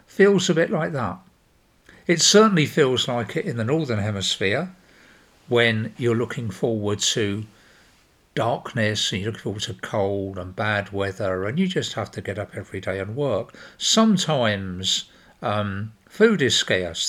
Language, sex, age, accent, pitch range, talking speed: English, male, 50-69, British, 100-130 Hz, 160 wpm